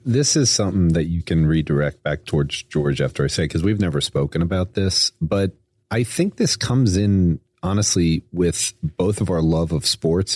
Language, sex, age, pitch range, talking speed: English, male, 40-59, 85-115 Hz, 190 wpm